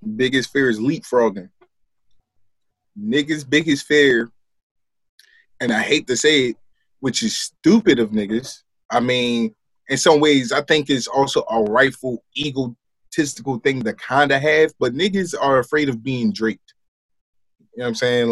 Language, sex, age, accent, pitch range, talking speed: English, male, 20-39, American, 115-145 Hz, 155 wpm